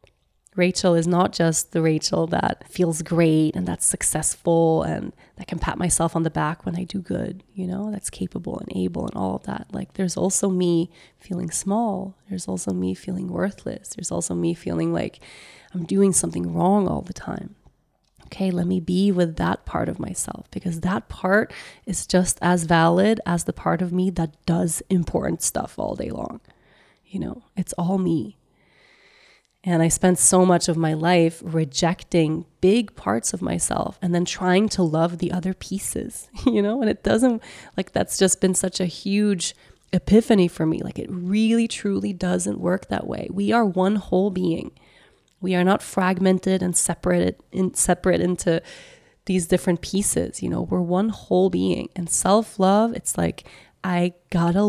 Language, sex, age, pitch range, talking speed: English, female, 20-39, 165-190 Hz, 180 wpm